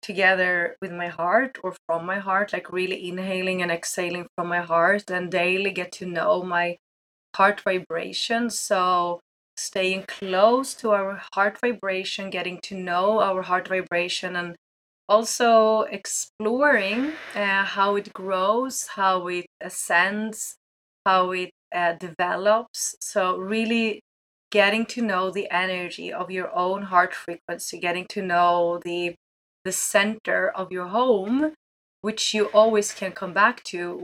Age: 20-39